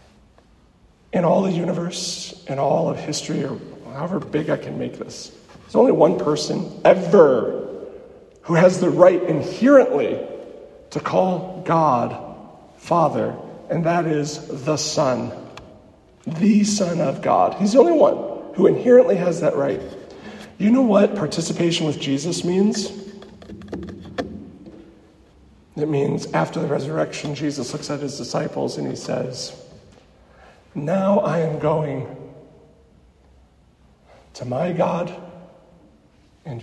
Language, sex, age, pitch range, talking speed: English, male, 40-59, 140-195 Hz, 125 wpm